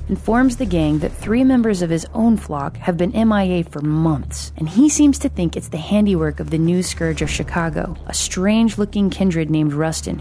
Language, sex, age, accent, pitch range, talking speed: English, female, 30-49, American, 155-210 Hz, 200 wpm